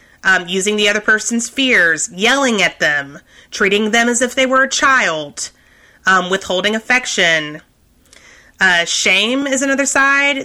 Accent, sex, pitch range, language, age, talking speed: American, female, 190-245 Hz, English, 30-49, 145 wpm